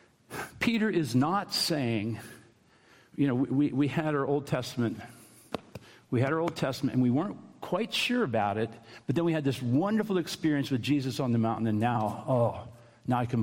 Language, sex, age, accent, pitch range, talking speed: English, male, 60-79, American, 125-160 Hz, 190 wpm